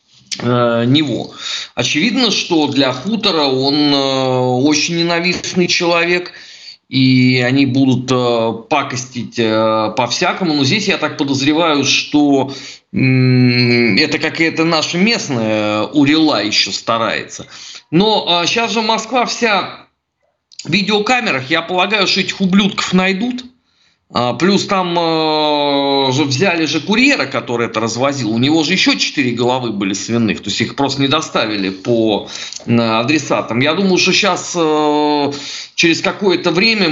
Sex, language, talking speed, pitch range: male, Russian, 130 wpm, 120-175 Hz